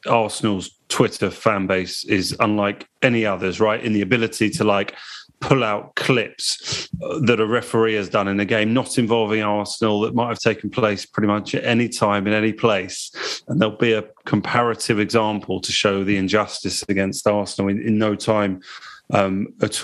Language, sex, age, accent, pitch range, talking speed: English, male, 30-49, British, 105-120 Hz, 180 wpm